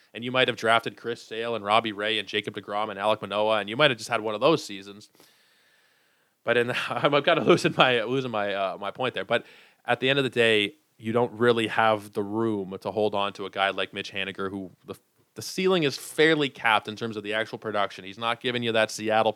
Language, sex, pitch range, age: English, male, 100-130 Hz, 20-39